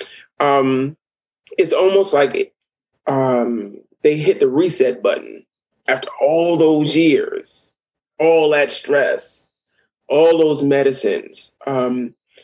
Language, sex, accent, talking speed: English, male, American, 100 wpm